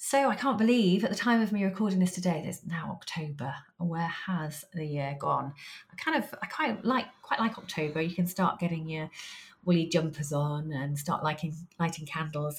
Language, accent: English, British